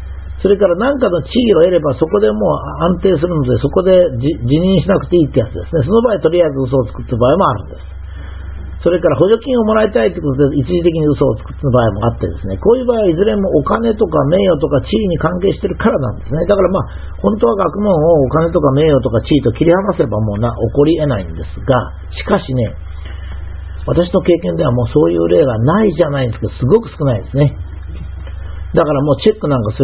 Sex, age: male, 50-69